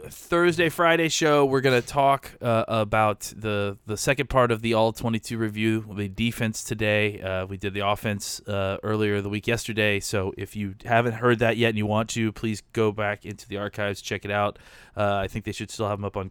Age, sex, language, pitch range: 20-39, male, English, 105-130 Hz